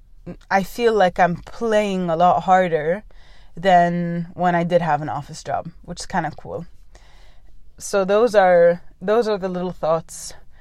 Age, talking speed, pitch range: 20-39, 165 wpm, 165-190 Hz